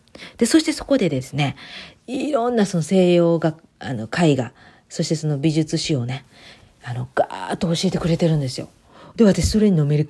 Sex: female